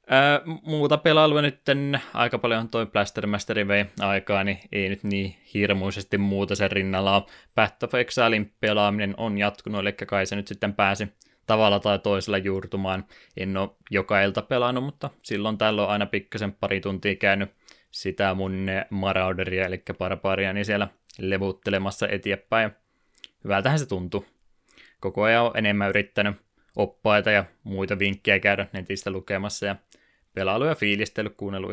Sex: male